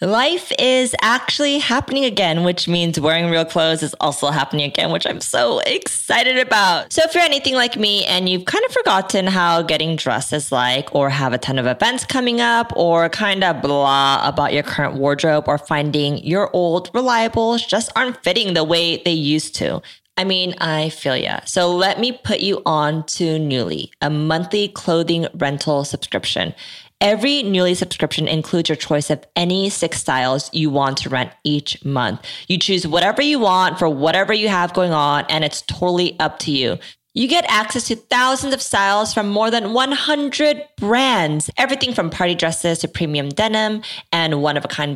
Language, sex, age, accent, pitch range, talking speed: English, female, 20-39, American, 150-220 Hz, 180 wpm